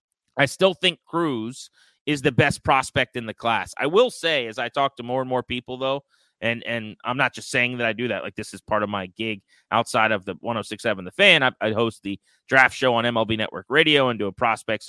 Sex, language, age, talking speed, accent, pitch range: male, English, 30-49, 240 wpm, American, 110-150 Hz